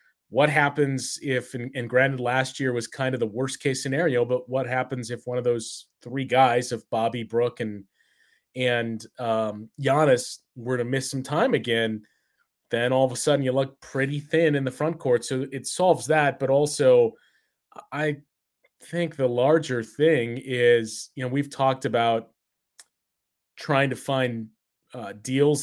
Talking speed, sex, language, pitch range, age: 165 wpm, male, English, 120-140 Hz, 20-39